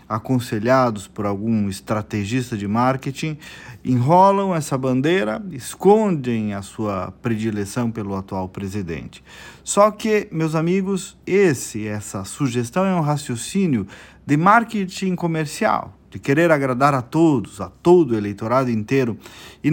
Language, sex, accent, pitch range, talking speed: Portuguese, male, Brazilian, 110-175 Hz, 120 wpm